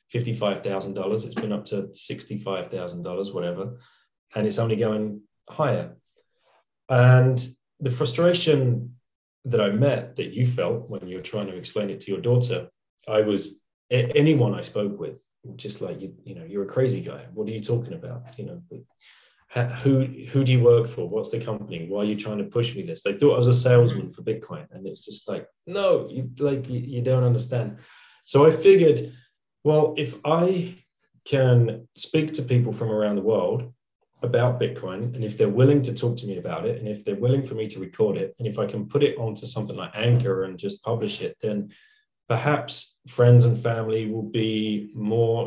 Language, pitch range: English, 105-130 Hz